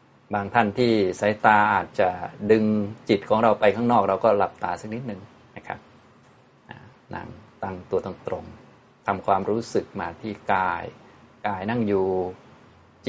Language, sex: Thai, male